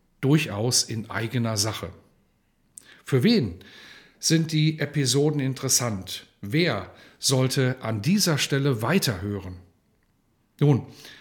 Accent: German